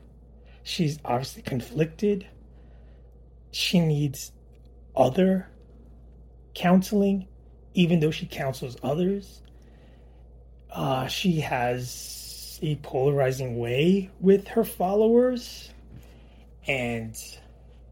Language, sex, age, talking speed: English, male, 30-49, 75 wpm